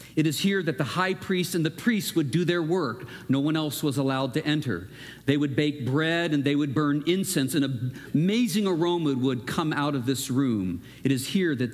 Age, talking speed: 50-69, 225 wpm